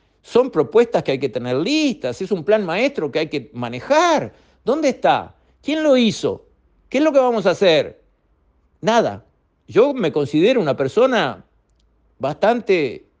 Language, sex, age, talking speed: Spanish, male, 50-69, 155 wpm